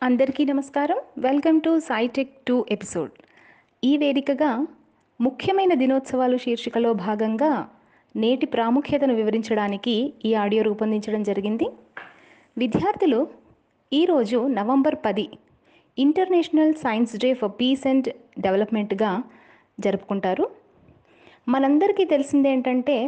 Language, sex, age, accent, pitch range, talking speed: Telugu, female, 30-49, native, 215-280 Hz, 90 wpm